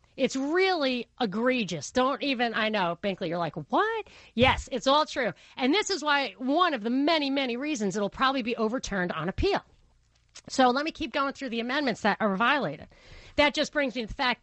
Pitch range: 215-275 Hz